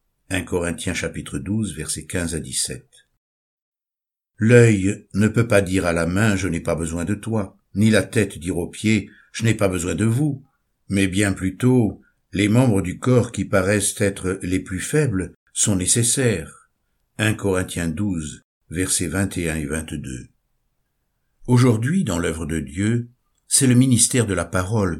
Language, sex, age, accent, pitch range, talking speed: French, male, 60-79, French, 85-115 Hz, 170 wpm